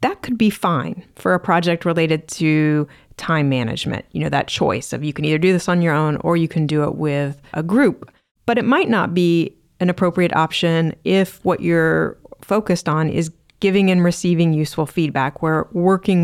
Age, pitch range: 30-49, 155-185 Hz